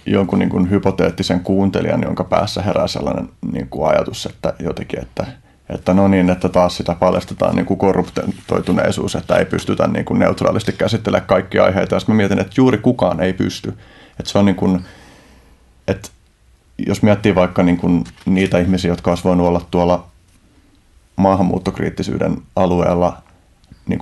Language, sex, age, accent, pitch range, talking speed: Finnish, male, 30-49, native, 90-95 Hz, 145 wpm